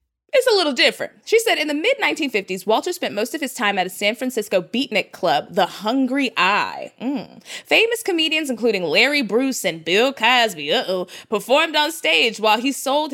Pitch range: 240-370 Hz